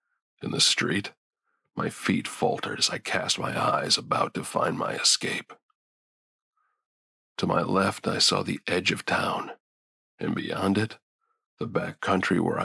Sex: male